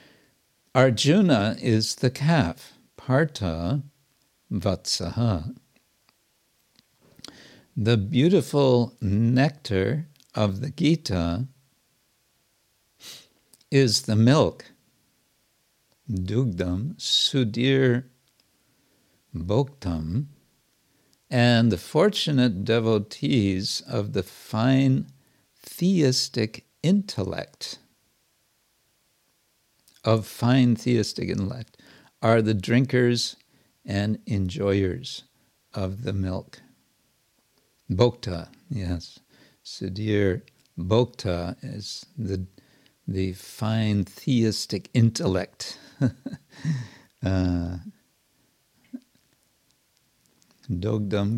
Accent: American